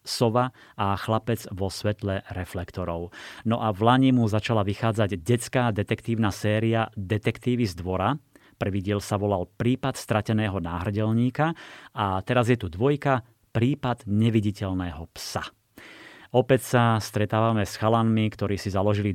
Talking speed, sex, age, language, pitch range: 130 wpm, male, 30-49, Slovak, 100-120 Hz